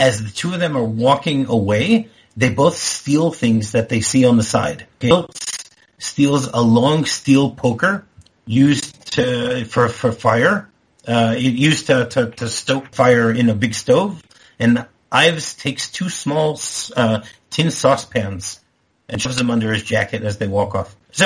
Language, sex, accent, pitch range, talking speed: English, male, American, 110-135 Hz, 170 wpm